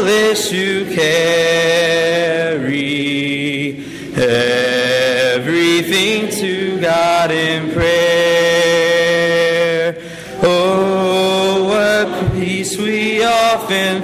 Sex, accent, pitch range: male, American, 160-215 Hz